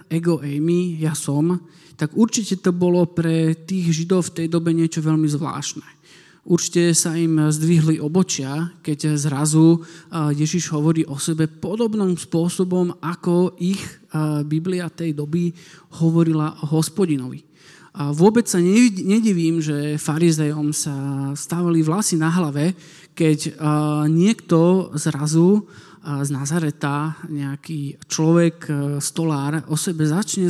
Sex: male